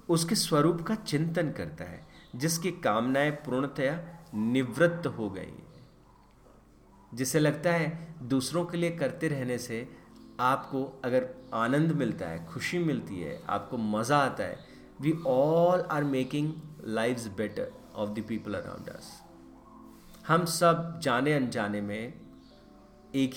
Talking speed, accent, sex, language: 125 wpm, native, male, Hindi